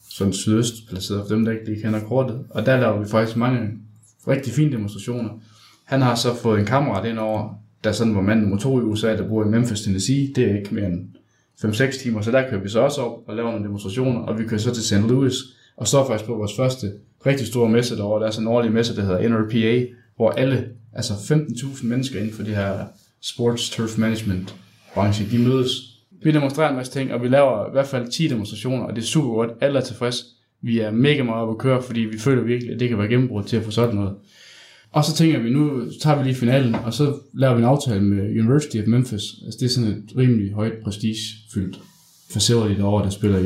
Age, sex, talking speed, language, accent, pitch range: 20-39, male, 235 wpm, English, Danish, 110-125 Hz